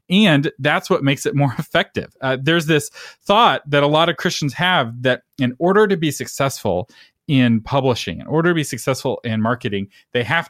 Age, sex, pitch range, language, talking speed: 40-59, male, 125-175 Hz, English, 195 wpm